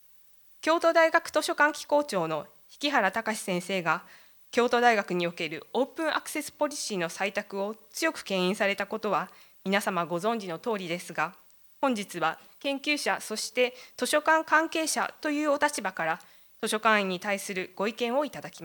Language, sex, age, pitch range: Japanese, female, 20-39, 180-280 Hz